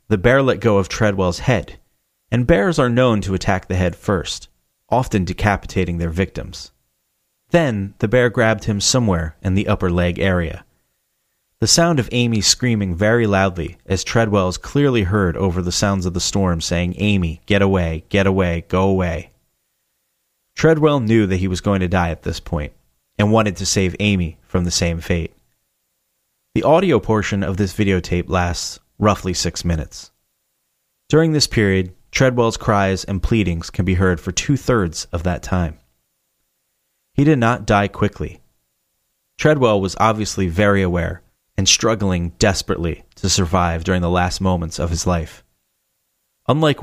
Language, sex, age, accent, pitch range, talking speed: English, male, 30-49, American, 85-110 Hz, 160 wpm